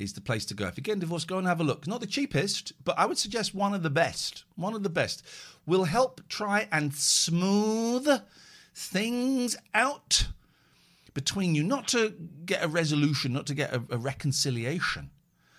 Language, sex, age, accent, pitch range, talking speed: English, male, 50-69, British, 130-210 Hz, 195 wpm